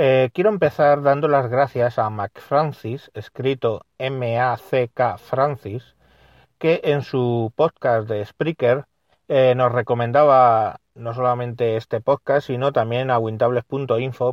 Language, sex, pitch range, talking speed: Spanish, male, 115-140 Hz, 115 wpm